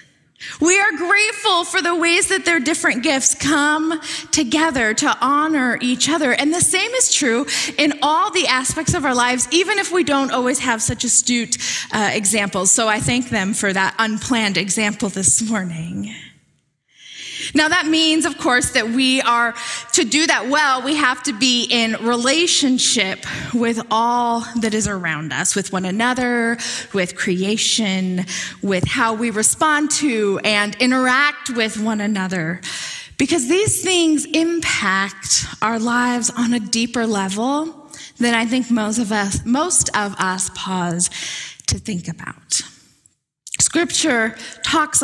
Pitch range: 225-310 Hz